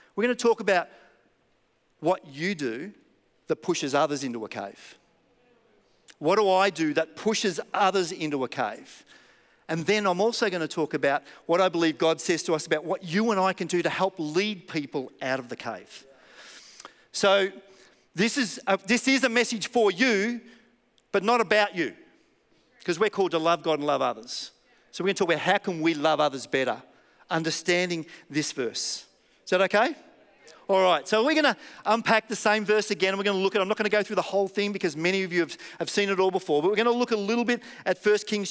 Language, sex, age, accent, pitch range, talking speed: English, male, 40-59, Australian, 170-215 Hz, 215 wpm